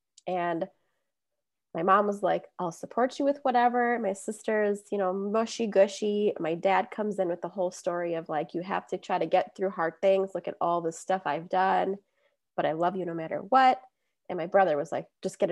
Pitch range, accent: 185-275 Hz, American